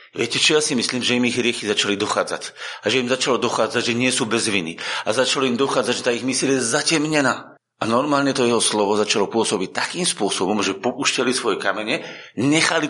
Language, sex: Slovak, male